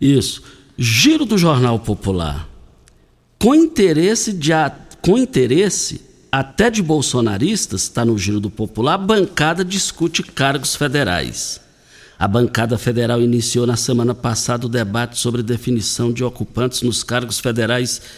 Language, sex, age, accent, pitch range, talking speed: Portuguese, male, 60-79, Brazilian, 120-165 Hz, 120 wpm